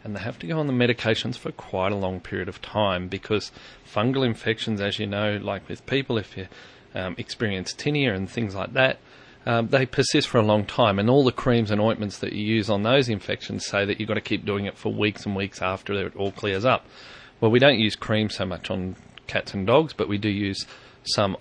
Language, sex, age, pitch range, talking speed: English, male, 30-49, 100-125 Hz, 240 wpm